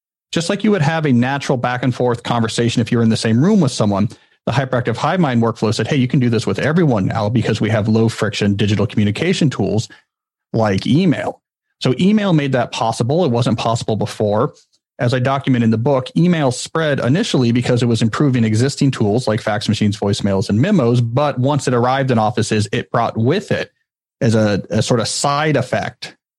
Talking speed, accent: 205 wpm, American